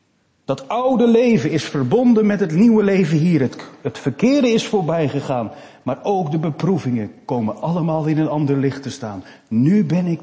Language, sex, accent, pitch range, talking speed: Dutch, male, Dutch, 110-165 Hz, 180 wpm